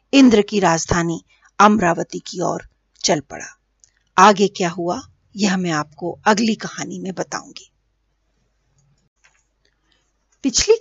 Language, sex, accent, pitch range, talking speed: Hindi, female, native, 190-250 Hz, 105 wpm